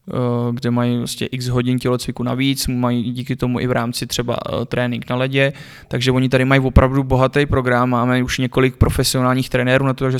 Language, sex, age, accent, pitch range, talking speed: Czech, male, 20-39, native, 125-130 Hz, 190 wpm